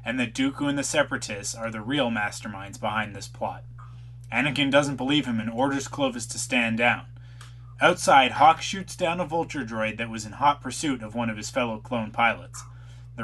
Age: 20-39